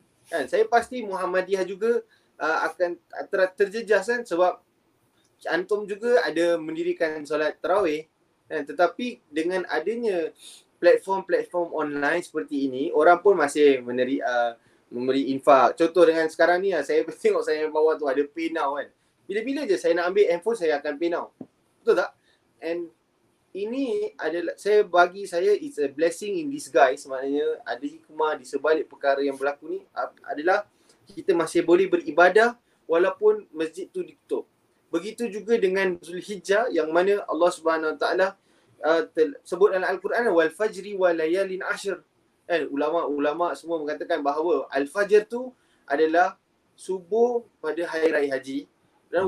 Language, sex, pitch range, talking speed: Malay, male, 160-235 Hz, 140 wpm